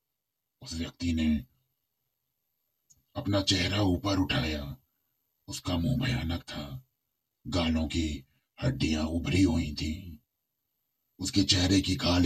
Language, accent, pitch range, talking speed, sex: Hindi, native, 80-95 Hz, 75 wpm, male